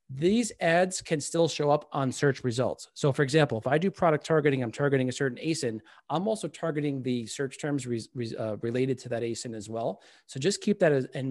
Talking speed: 210 wpm